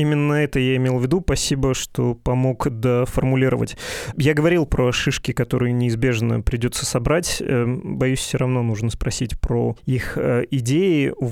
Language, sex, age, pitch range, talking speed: Russian, male, 20-39, 120-135 Hz, 145 wpm